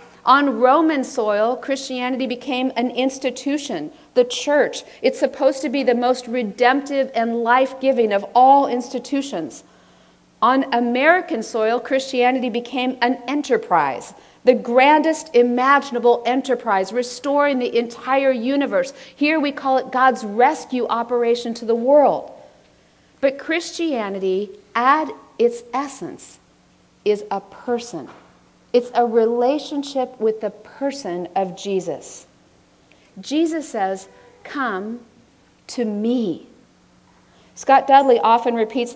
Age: 50-69